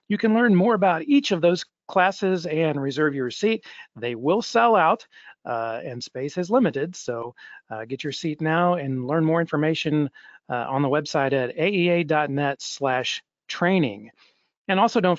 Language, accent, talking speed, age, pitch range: English, American, 170 wpm, 40-59, 145-190 Hz